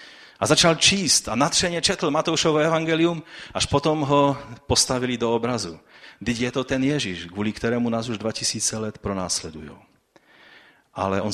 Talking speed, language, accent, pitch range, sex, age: 155 wpm, Czech, native, 100-140 Hz, male, 40-59